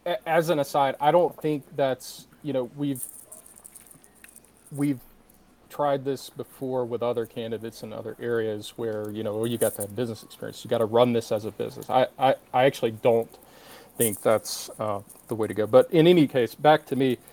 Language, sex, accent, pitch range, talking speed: English, male, American, 120-150 Hz, 195 wpm